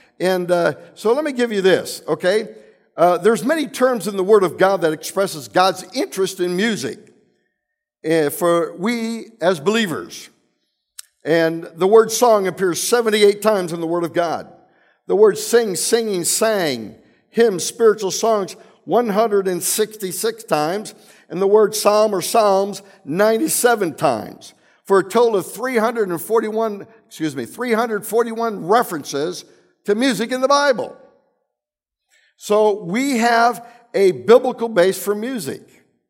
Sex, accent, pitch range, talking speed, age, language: male, American, 180-230 Hz, 135 wpm, 60-79, English